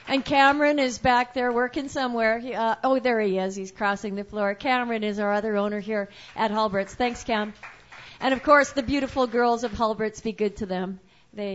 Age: 50-69